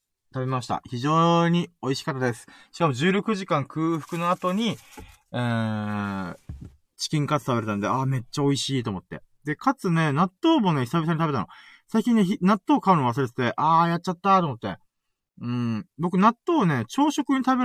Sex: male